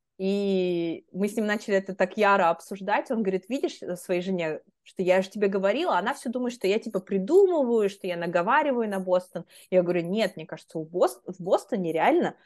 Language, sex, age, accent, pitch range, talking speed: Russian, female, 20-39, native, 180-230 Hz, 200 wpm